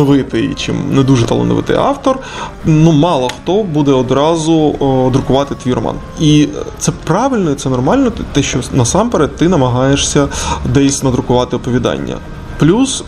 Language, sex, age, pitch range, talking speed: Ukrainian, male, 20-39, 130-150 Hz, 130 wpm